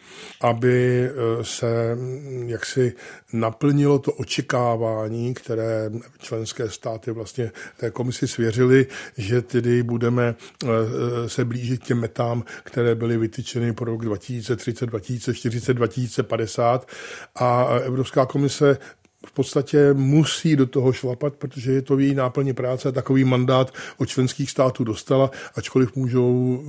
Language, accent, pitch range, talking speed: Czech, native, 120-130 Hz, 110 wpm